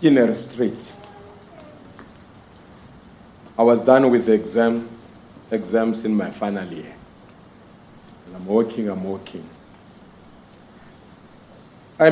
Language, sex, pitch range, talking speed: English, male, 120-160 Hz, 100 wpm